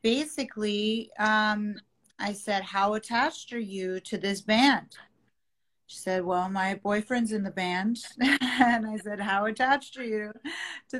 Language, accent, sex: Italian, American, female